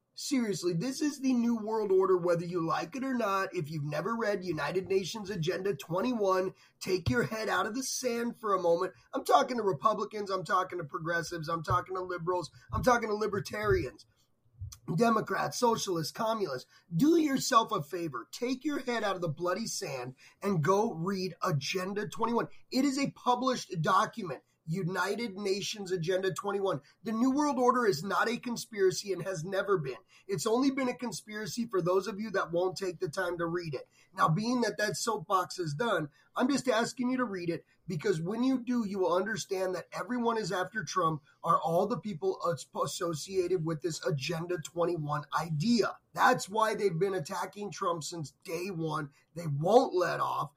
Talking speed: 185 wpm